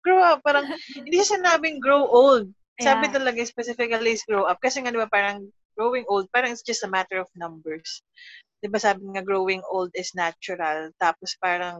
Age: 20-39